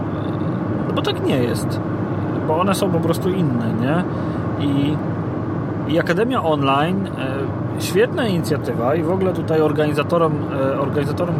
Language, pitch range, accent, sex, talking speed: Polish, 130-160 Hz, native, male, 115 wpm